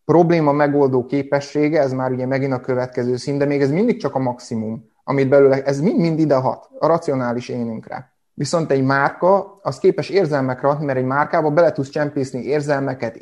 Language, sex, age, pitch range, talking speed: Hungarian, male, 30-49, 130-155 Hz, 185 wpm